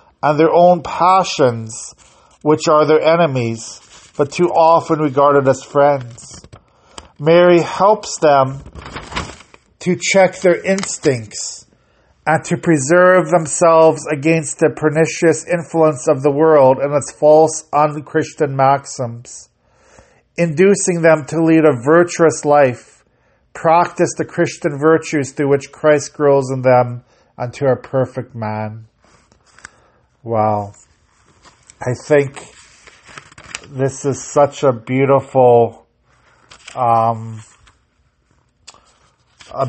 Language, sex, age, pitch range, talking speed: English, male, 40-59, 125-160 Hz, 105 wpm